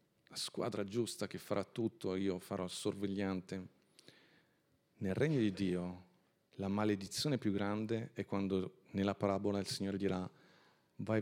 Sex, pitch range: male, 95-120 Hz